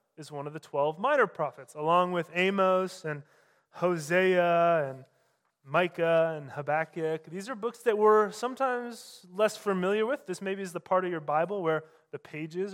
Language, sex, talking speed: English, male, 170 wpm